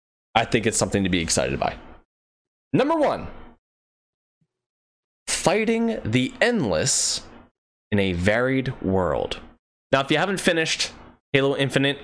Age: 20-39